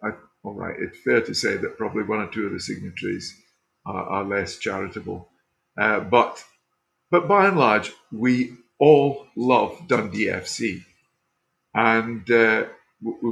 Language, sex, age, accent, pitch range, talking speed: English, male, 50-69, British, 105-125 Hz, 145 wpm